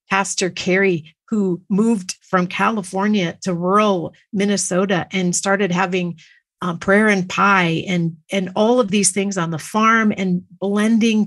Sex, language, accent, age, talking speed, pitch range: female, English, American, 50-69, 145 wpm, 170-205 Hz